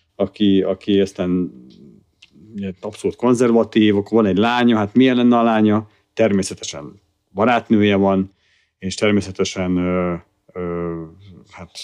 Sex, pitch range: male, 95-110 Hz